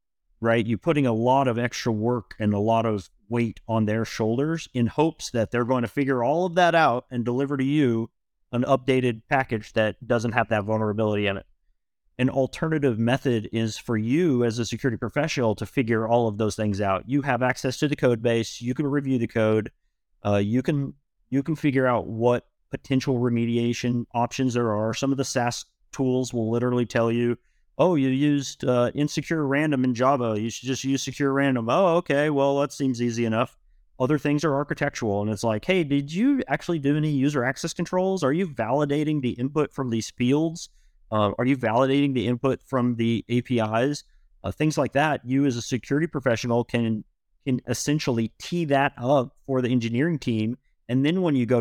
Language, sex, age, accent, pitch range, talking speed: English, male, 30-49, American, 115-140 Hz, 200 wpm